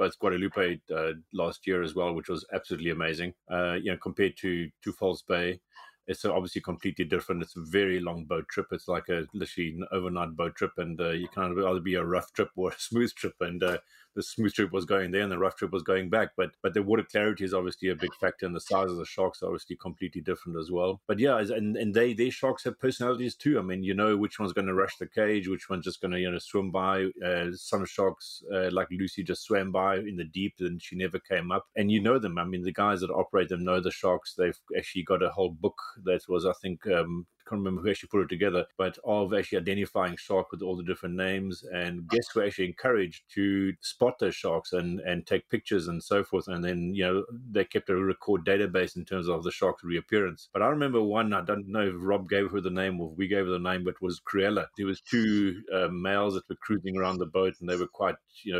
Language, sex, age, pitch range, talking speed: English, male, 30-49, 90-100 Hz, 250 wpm